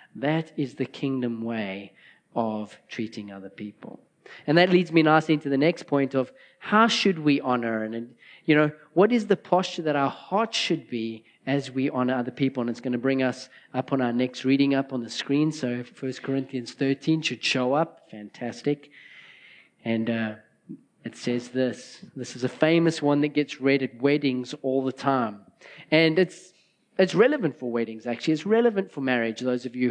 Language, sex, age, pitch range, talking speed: English, male, 30-49, 130-175 Hz, 195 wpm